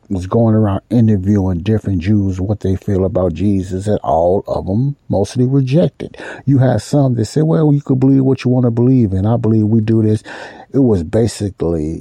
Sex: male